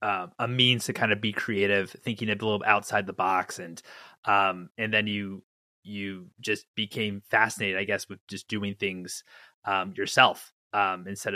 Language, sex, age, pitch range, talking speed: English, male, 30-49, 105-125 Hz, 175 wpm